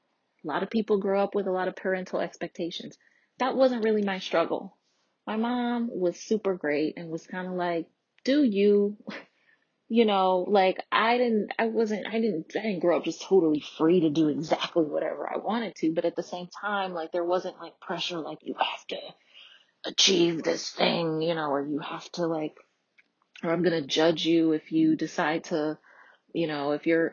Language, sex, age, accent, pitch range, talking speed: English, female, 30-49, American, 150-190 Hz, 195 wpm